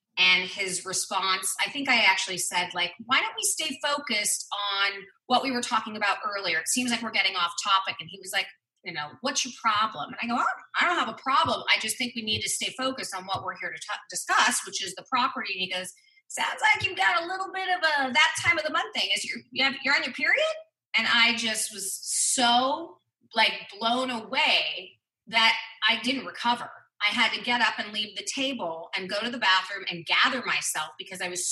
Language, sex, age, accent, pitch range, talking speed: English, female, 30-49, American, 185-250 Hz, 235 wpm